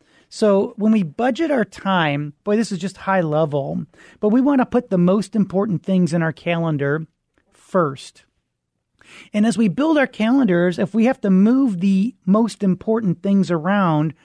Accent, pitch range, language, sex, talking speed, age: American, 170-215 Hz, English, male, 175 wpm, 40-59